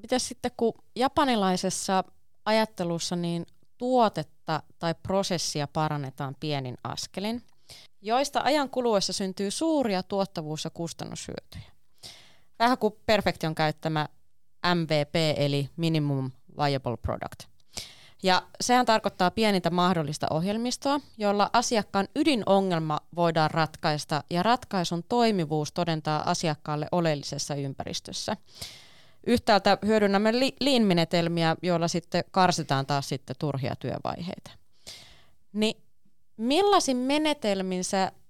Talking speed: 95 wpm